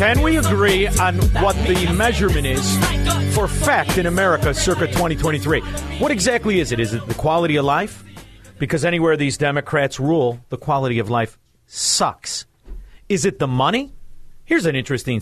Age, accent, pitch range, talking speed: 40-59, American, 120-170 Hz, 160 wpm